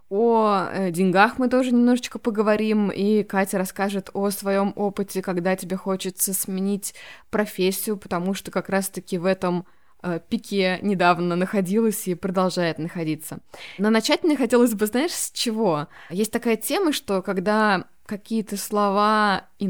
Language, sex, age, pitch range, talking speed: Russian, female, 20-39, 185-225 Hz, 140 wpm